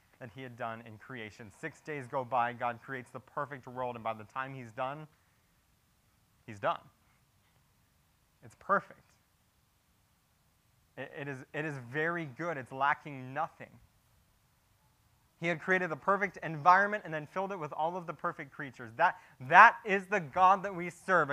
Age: 20-39